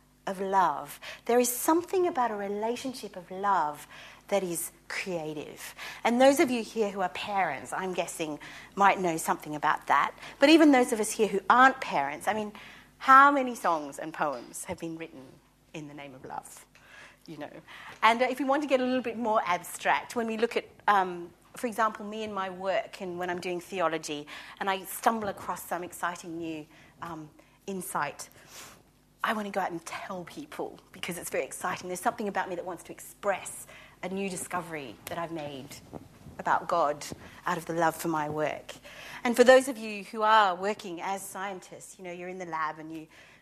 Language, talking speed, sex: English, 200 wpm, female